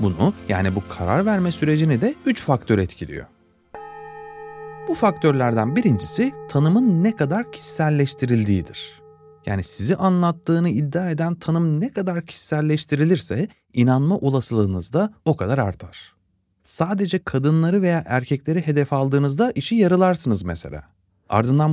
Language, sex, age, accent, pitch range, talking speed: Turkish, male, 30-49, native, 110-180 Hz, 115 wpm